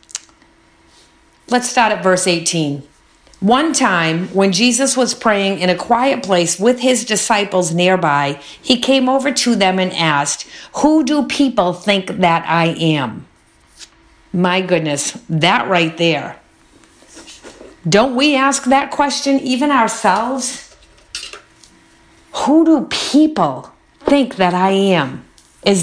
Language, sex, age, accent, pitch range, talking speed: English, female, 50-69, American, 185-270 Hz, 125 wpm